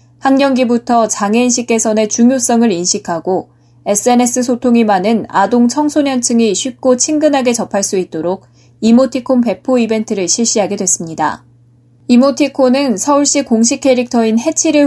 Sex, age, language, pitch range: female, 20-39, Korean, 190-250 Hz